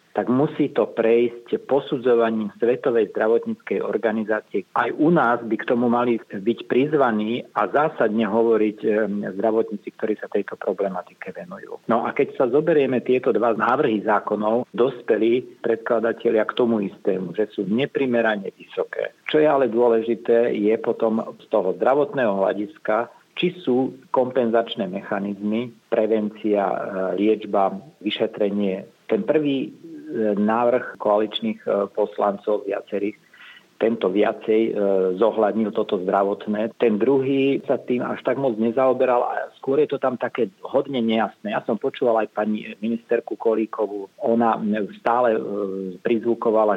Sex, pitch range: male, 105-120 Hz